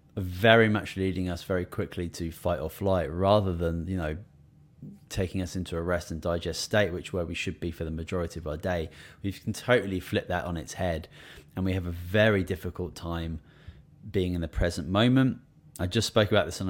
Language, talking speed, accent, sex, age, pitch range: English, 210 wpm, British, male, 20-39, 85-100 Hz